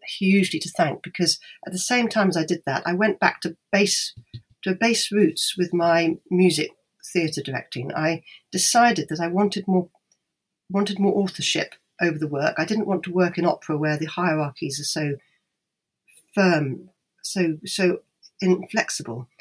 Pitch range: 155-195 Hz